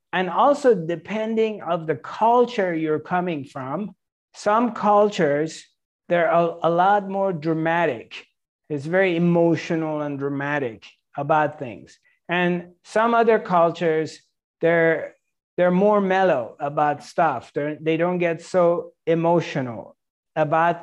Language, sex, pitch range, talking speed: English, male, 160-200 Hz, 115 wpm